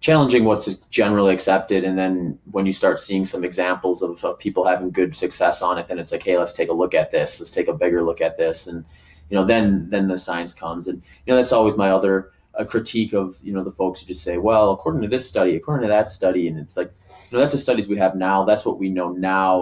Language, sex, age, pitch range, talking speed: English, male, 30-49, 90-105 Hz, 265 wpm